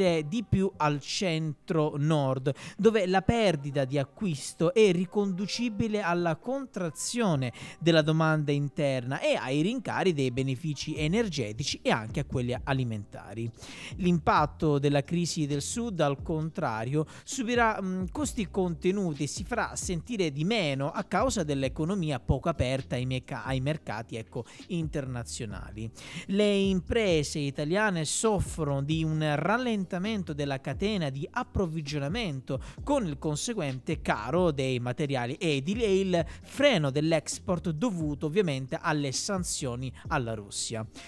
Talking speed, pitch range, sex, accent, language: 120 wpm, 140-190 Hz, male, native, Italian